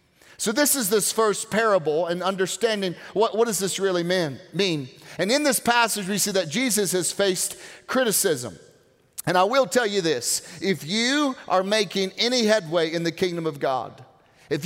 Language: English